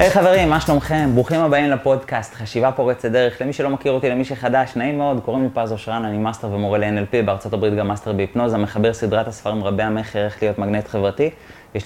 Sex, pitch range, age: male, 100-125 Hz, 20-39